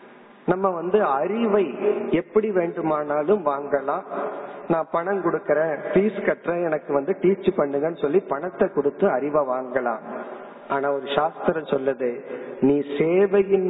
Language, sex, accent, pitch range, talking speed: Tamil, male, native, 145-200 Hz, 75 wpm